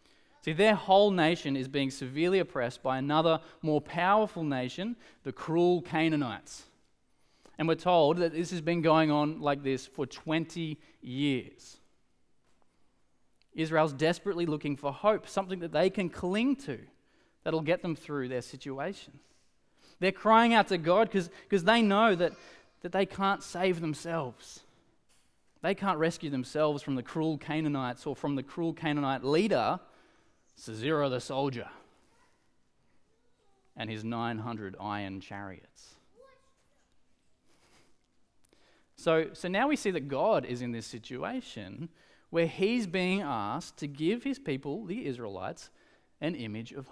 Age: 20-39